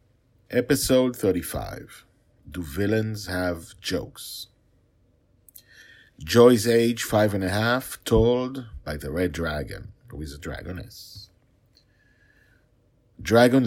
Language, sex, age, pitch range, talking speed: English, male, 50-69, 80-105 Hz, 95 wpm